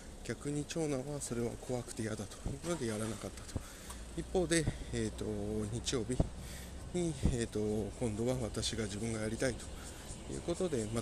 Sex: male